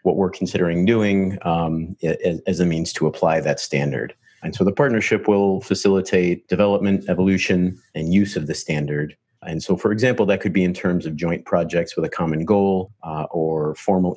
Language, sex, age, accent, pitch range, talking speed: English, male, 40-59, American, 85-100 Hz, 185 wpm